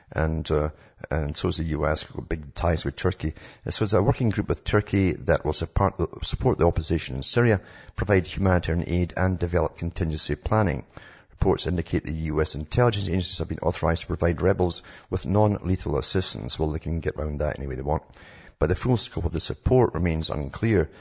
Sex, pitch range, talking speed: male, 75-100 Hz, 190 wpm